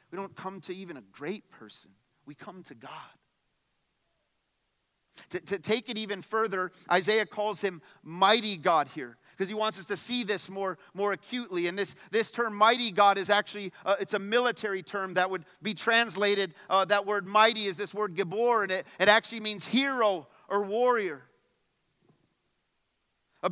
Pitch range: 195-245 Hz